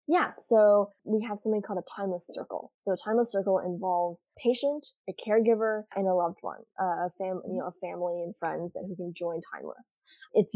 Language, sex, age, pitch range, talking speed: English, female, 10-29, 180-210 Hz, 195 wpm